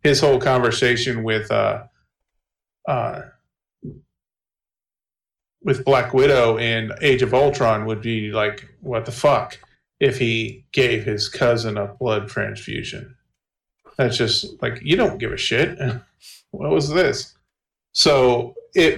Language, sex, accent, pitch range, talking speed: English, male, American, 110-140 Hz, 125 wpm